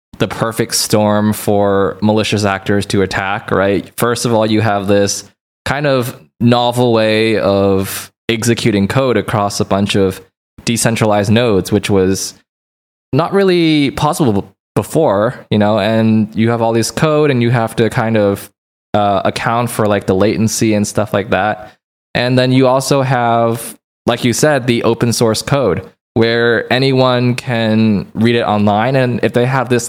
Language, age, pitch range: English, 20-39, 105-120 Hz